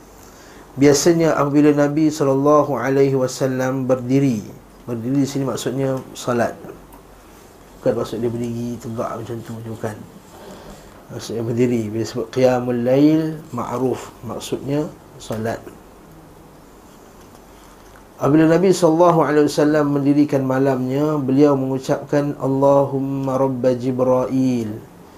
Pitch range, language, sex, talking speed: 120-140 Hz, Malay, male, 100 wpm